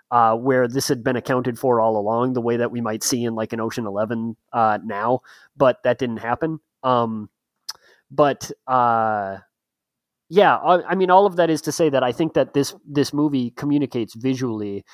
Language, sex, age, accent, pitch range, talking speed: English, male, 30-49, American, 115-150 Hz, 195 wpm